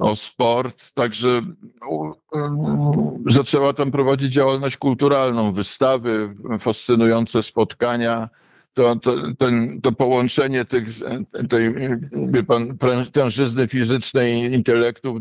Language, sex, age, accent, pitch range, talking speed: Polish, male, 50-69, native, 115-140 Hz, 85 wpm